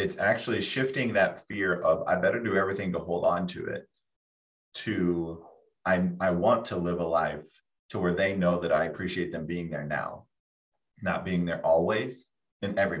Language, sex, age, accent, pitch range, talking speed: English, male, 30-49, American, 85-100 Hz, 180 wpm